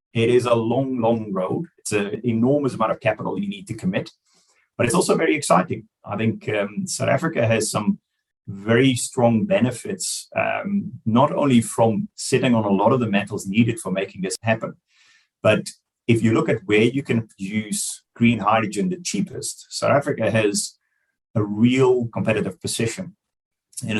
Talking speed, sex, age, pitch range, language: 170 wpm, male, 30-49, 105-130 Hz, English